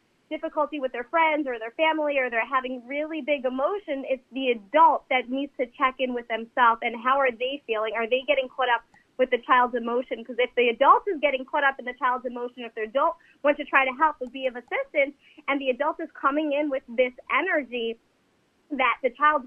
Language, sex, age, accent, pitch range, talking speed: English, female, 30-49, American, 250-295 Hz, 225 wpm